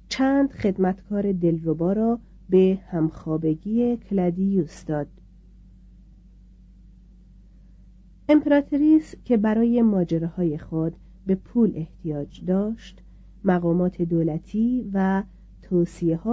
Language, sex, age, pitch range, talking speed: Persian, female, 40-59, 175-220 Hz, 85 wpm